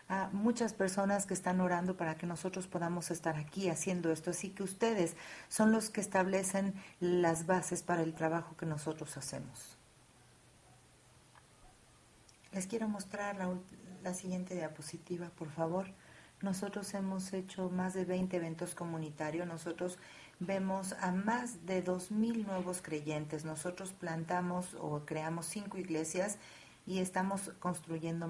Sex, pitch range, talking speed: female, 165-190 Hz, 135 wpm